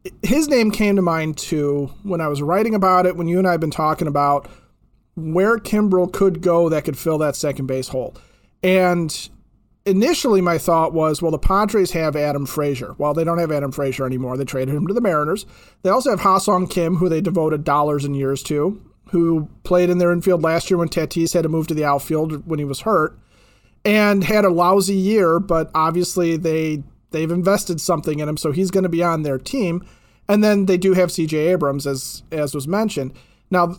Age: 40-59